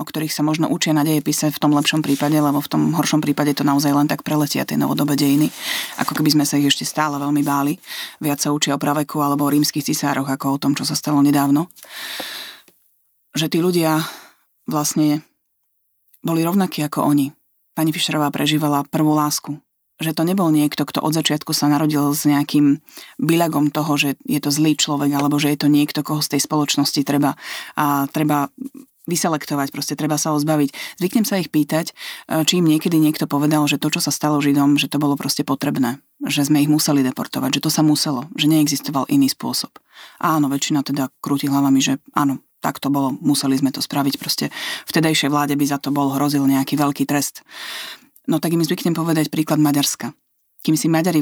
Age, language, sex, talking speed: 30-49, Slovak, female, 195 wpm